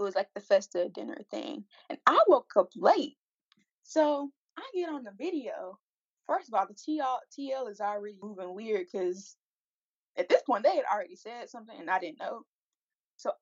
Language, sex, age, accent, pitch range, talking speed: English, female, 10-29, American, 215-330 Hz, 190 wpm